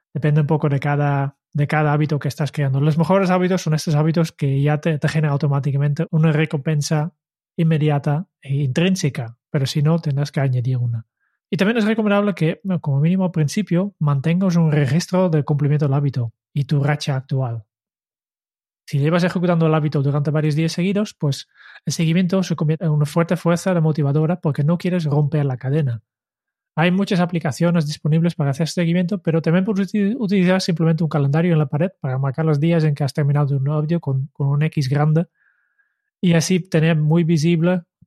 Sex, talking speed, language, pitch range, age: male, 185 wpm, Spanish, 145-170 Hz, 20-39